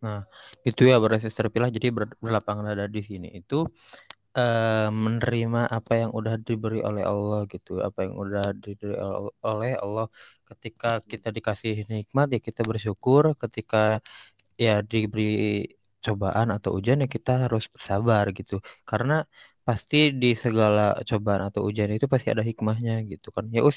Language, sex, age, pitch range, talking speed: Indonesian, male, 20-39, 105-115 Hz, 150 wpm